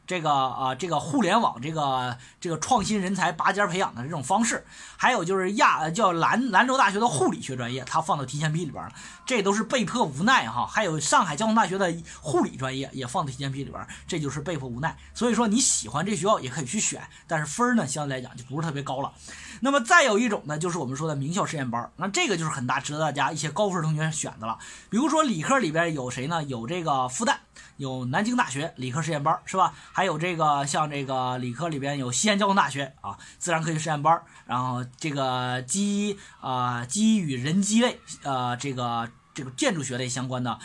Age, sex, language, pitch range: 20-39, male, Chinese, 130-190 Hz